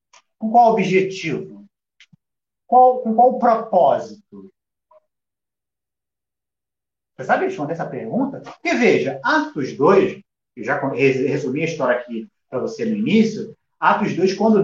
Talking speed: 120 wpm